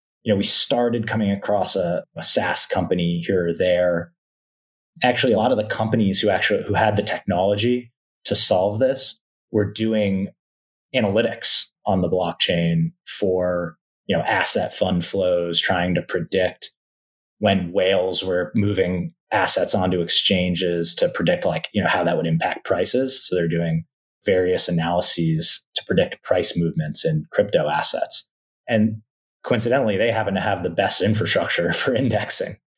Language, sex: English, male